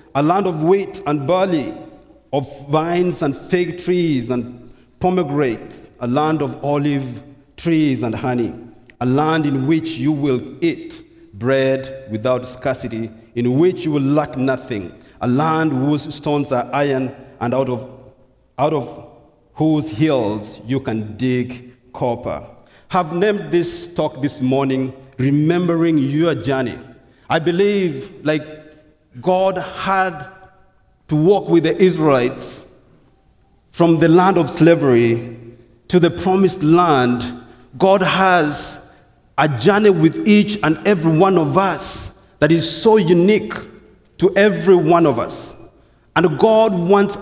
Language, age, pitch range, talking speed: English, 50-69, 130-175 Hz, 130 wpm